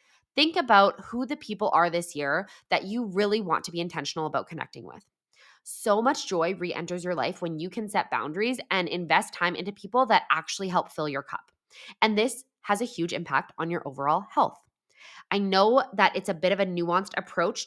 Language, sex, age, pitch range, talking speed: English, female, 20-39, 170-230 Hz, 205 wpm